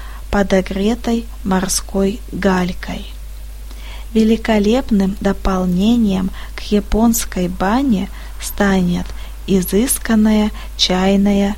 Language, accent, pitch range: Russian, native, 190-220 Hz